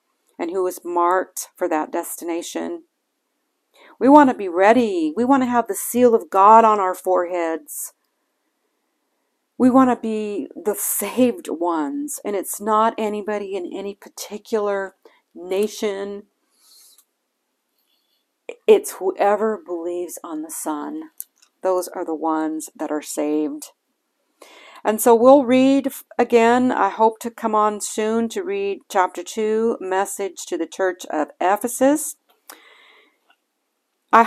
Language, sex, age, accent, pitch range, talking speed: English, female, 50-69, American, 195-265 Hz, 130 wpm